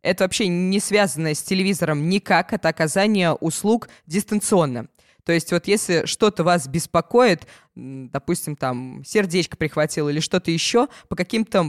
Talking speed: 140 wpm